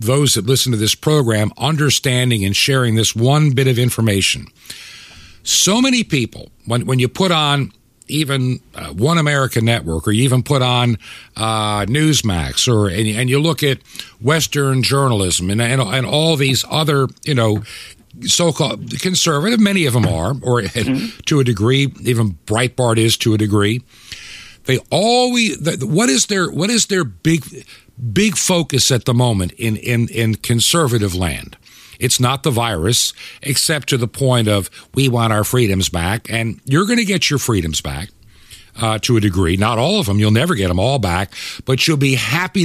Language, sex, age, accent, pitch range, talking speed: English, male, 60-79, American, 110-145 Hz, 180 wpm